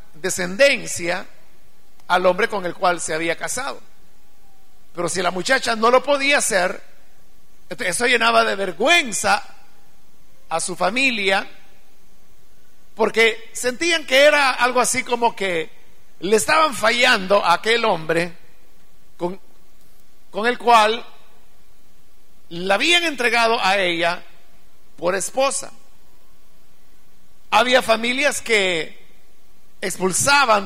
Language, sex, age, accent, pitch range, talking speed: Spanish, male, 50-69, Mexican, 190-245 Hz, 105 wpm